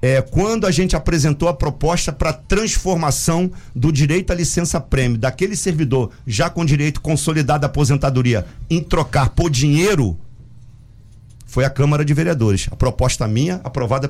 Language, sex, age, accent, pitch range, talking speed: Portuguese, male, 50-69, Brazilian, 130-160 Hz, 145 wpm